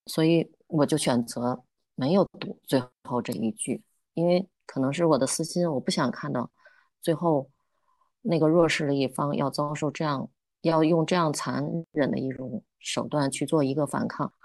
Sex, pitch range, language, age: female, 130-155 Hz, Chinese, 20-39